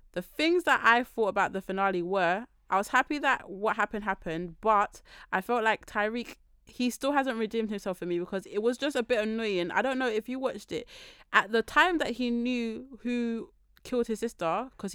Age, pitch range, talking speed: 20-39, 185-225 Hz, 215 wpm